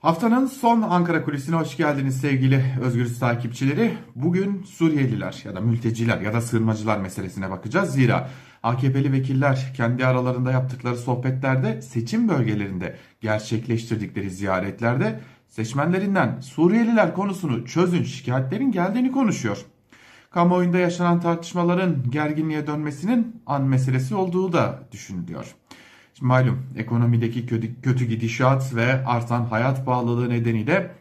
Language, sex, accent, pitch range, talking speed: German, male, Turkish, 115-170 Hz, 110 wpm